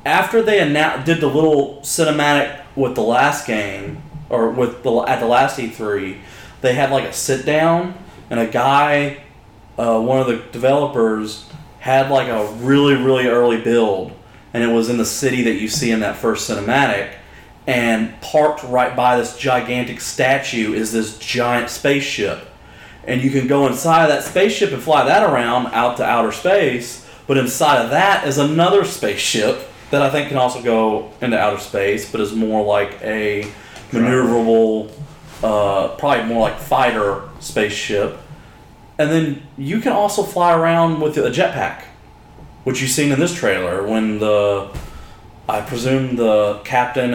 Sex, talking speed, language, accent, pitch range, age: male, 165 wpm, English, American, 110-140 Hz, 30-49